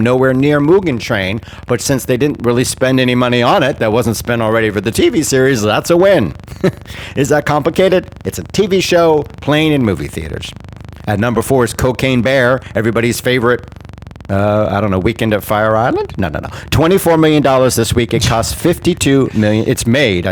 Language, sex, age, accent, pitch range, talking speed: English, male, 50-69, American, 105-130 Hz, 195 wpm